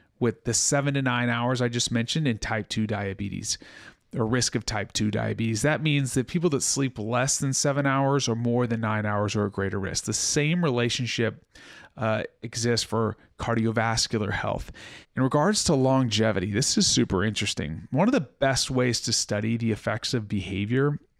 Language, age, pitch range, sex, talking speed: English, 30-49, 110-135 Hz, male, 185 wpm